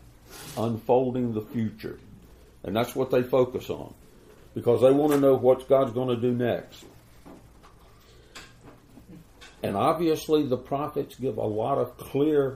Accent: American